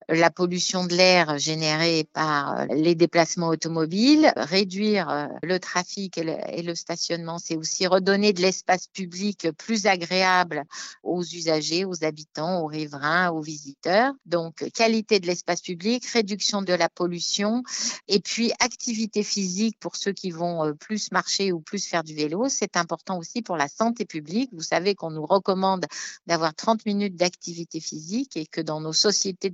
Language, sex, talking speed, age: French, female, 155 wpm, 50-69